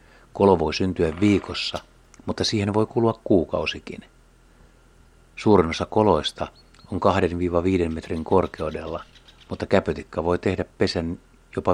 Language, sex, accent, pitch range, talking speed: Finnish, male, native, 80-95 Hz, 110 wpm